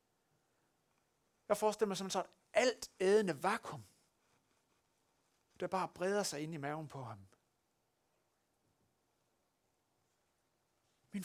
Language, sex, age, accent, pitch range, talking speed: Danish, male, 60-79, native, 120-185 Hz, 90 wpm